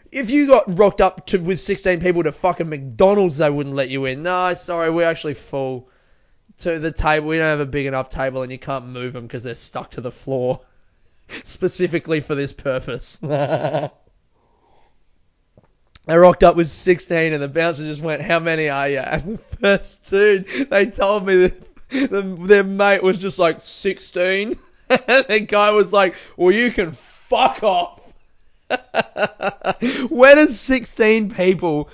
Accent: Australian